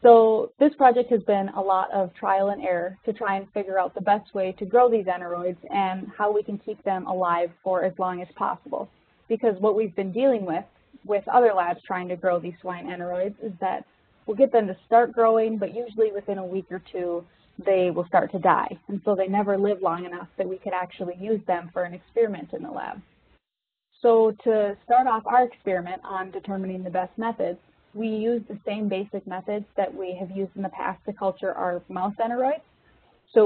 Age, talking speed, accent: 20-39, 215 wpm, American